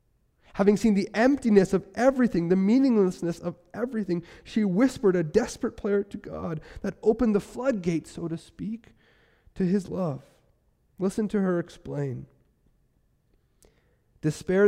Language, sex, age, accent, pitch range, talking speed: English, male, 30-49, American, 125-180 Hz, 130 wpm